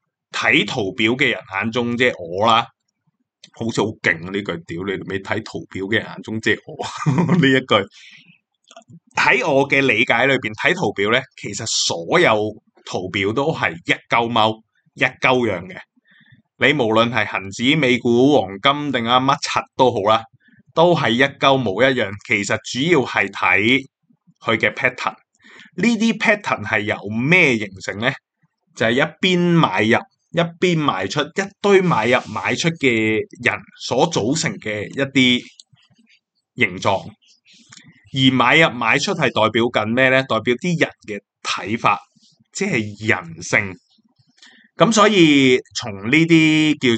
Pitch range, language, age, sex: 110-160 Hz, Chinese, 20-39, male